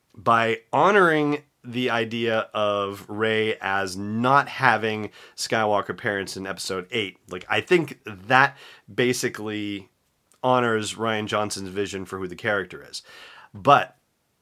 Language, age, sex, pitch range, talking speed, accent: English, 30-49, male, 95-120 Hz, 120 wpm, American